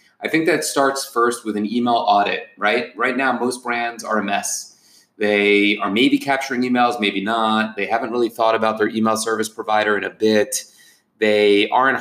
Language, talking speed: English, 190 wpm